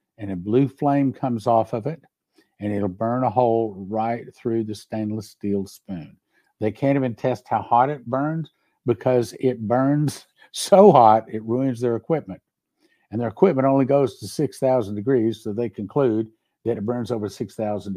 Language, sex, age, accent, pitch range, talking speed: English, male, 50-69, American, 110-135 Hz, 175 wpm